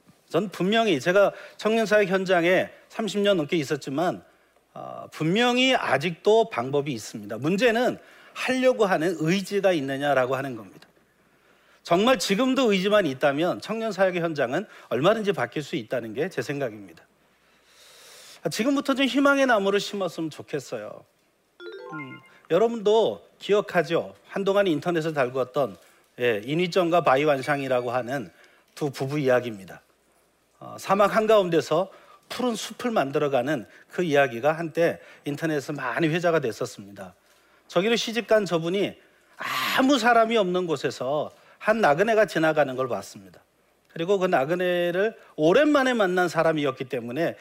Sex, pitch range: male, 150-215 Hz